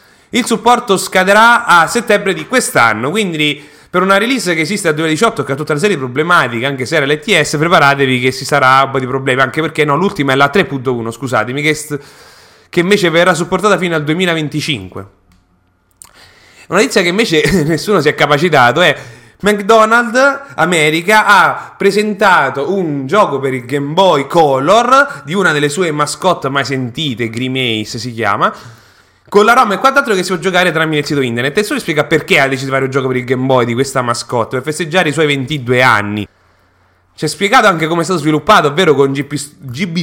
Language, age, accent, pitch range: English, 30-49, Italian, 135-200 Hz